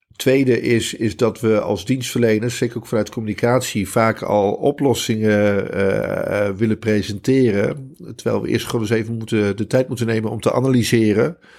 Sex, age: male, 50-69